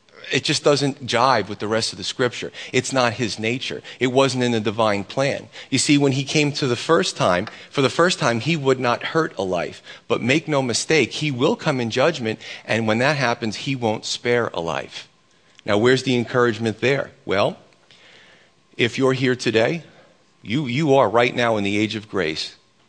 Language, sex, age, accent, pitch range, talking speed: English, male, 40-59, American, 110-135 Hz, 200 wpm